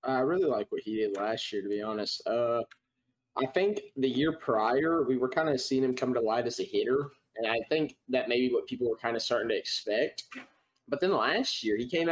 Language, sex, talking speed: English, male, 245 wpm